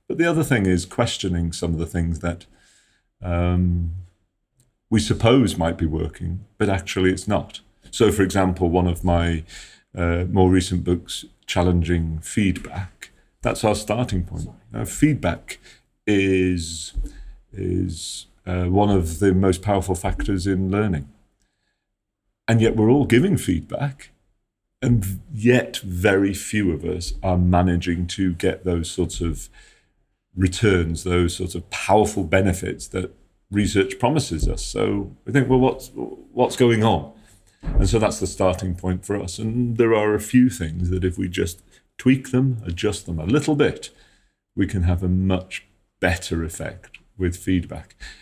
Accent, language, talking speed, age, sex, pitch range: British, Swedish, 150 wpm, 40-59, male, 90-100 Hz